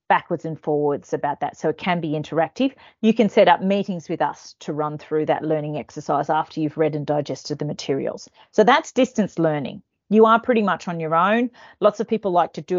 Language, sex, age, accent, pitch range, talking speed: English, female, 40-59, Australian, 155-205 Hz, 220 wpm